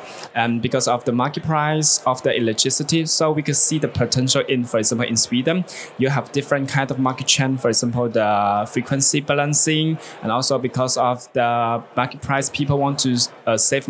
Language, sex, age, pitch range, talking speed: Swedish, male, 20-39, 120-145 Hz, 190 wpm